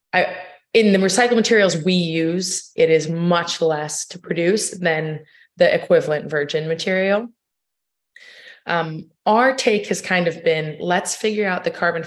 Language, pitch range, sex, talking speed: English, 160-195 Hz, female, 150 wpm